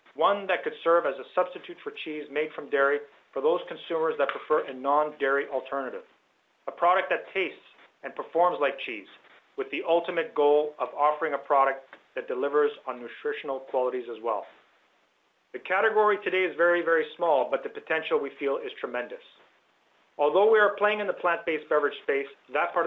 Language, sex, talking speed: English, male, 180 wpm